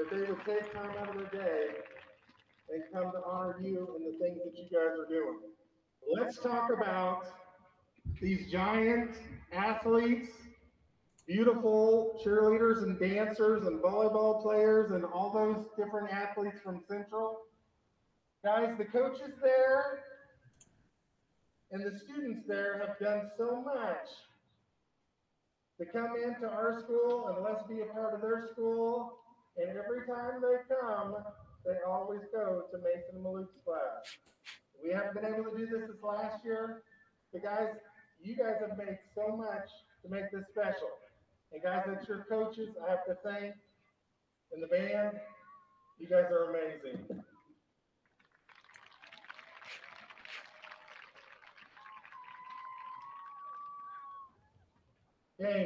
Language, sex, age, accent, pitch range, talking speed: English, male, 50-69, American, 190-235 Hz, 125 wpm